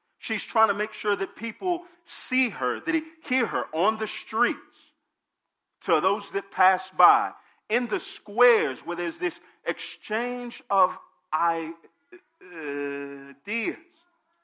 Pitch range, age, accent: 185-280 Hz, 40-59, American